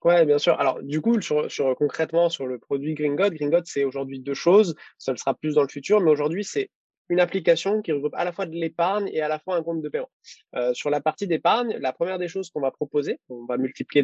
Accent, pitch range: French, 135-170 Hz